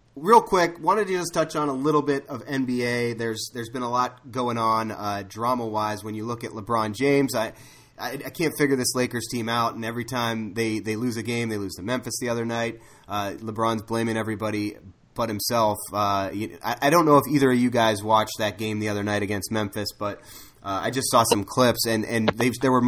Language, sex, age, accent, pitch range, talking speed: English, male, 30-49, American, 110-130 Hz, 230 wpm